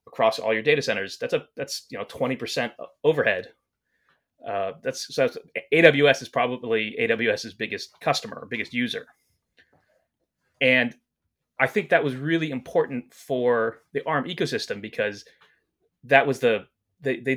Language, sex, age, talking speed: English, male, 30-49, 140 wpm